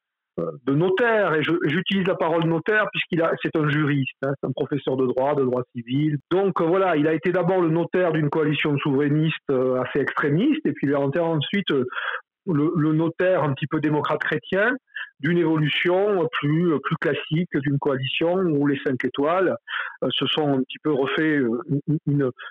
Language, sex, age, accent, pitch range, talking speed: French, male, 50-69, French, 135-175 Hz, 180 wpm